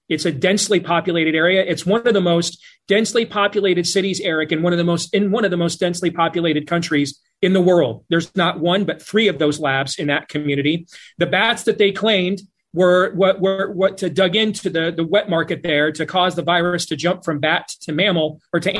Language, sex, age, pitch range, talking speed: English, male, 30-49, 165-205 Hz, 225 wpm